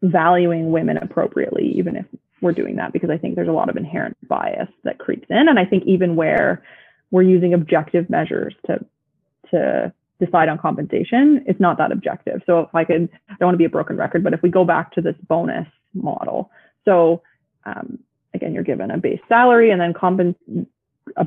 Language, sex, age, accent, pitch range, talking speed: English, female, 20-39, American, 170-200 Hz, 200 wpm